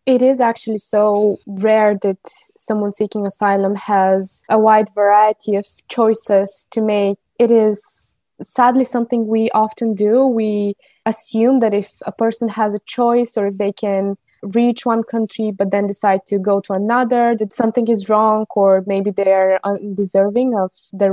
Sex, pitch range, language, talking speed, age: female, 200-235 Hz, English, 160 wpm, 20-39